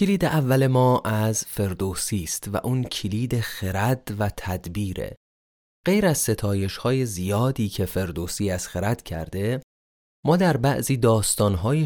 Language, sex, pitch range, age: Persian, male, 95-135 Hz, 30-49